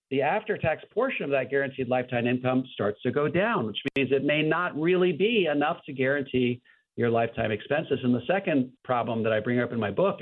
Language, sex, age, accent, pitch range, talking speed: English, male, 50-69, American, 120-155 Hz, 210 wpm